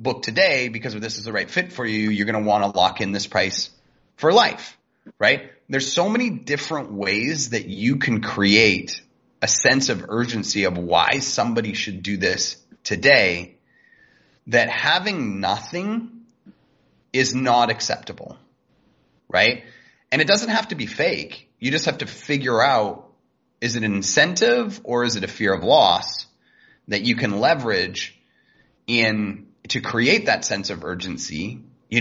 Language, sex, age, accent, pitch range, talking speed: English, male, 30-49, American, 105-150 Hz, 160 wpm